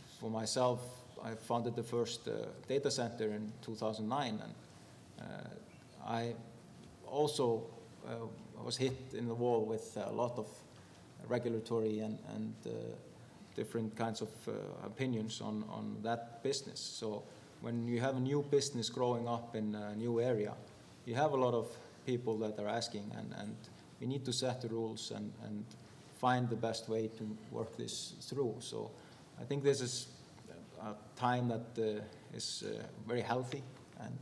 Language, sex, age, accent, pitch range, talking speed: English, male, 30-49, Finnish, 110-125 Hz, 160 wpm